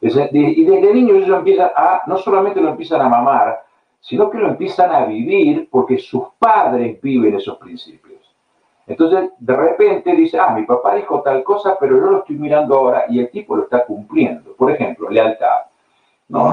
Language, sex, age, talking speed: Spanish, male, 60-79, 180 wpm